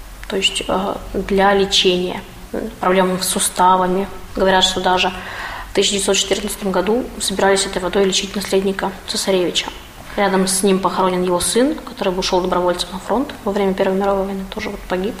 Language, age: Russian, 20-39